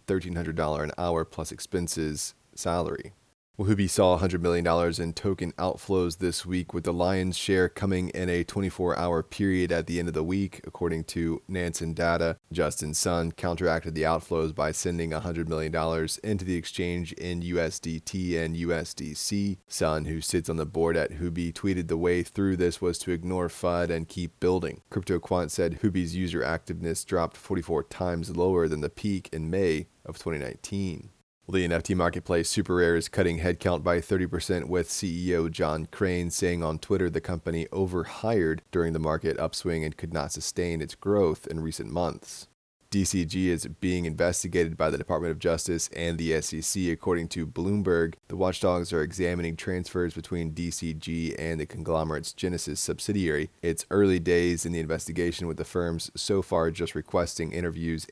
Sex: male